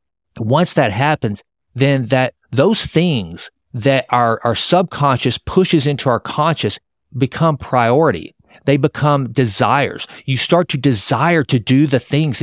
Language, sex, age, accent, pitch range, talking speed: English, male, 50-69, American, 110-135 Hz, 135 wpm